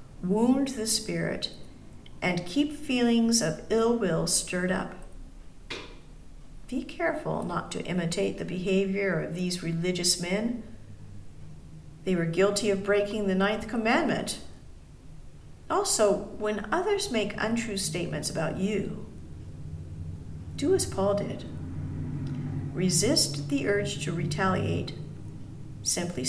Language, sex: English, female